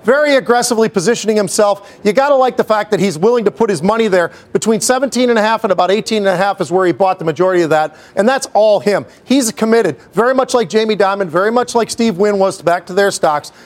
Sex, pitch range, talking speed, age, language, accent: male, 195-240 Hz, 255 wpm, 40-59, English, American